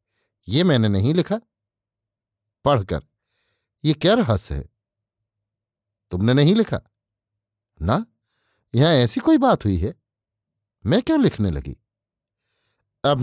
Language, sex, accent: Hindi, male, native